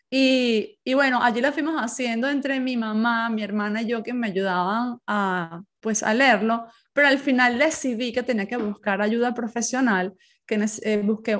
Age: 20-39